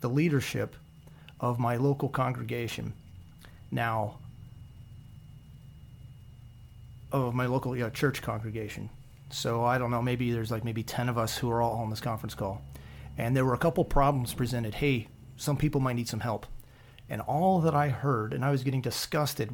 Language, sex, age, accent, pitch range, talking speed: English, male, 40-59, American, 120-145 Hz, 165 wpm